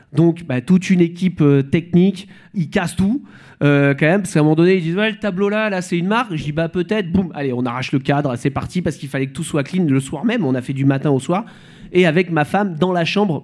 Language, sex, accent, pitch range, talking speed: French, male, French, 140-185 Hz, 285 wpm